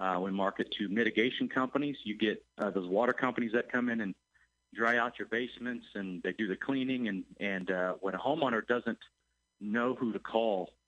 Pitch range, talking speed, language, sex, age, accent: 100-120 Hz, 200 wpm, English, male, 40-59, American